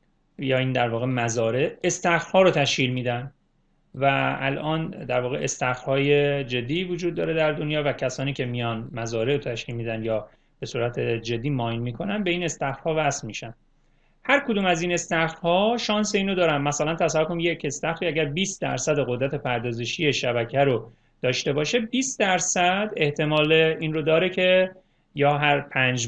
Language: Persian